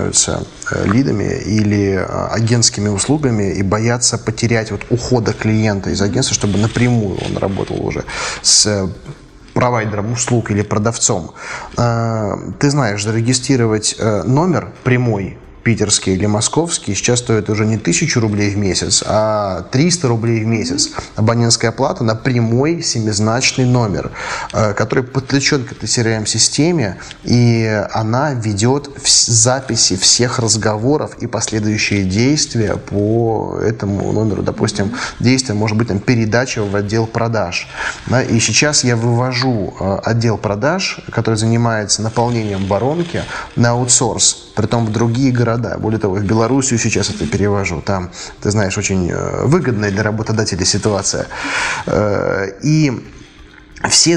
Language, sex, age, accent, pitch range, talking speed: Russian, male, 20-39, native, 105-125 Hz, 120 wpm